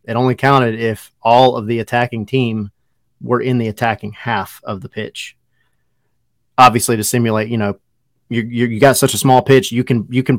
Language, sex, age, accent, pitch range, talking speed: English, male, 30-49, American, 110-135 Hz, 195 wpm